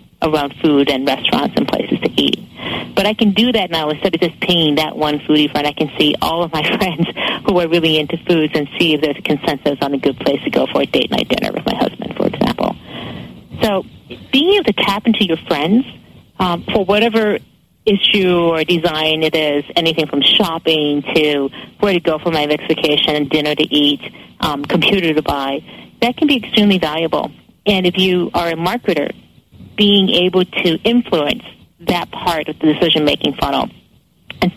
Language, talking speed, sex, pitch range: English, 195 wpm, female, 150-195 Hz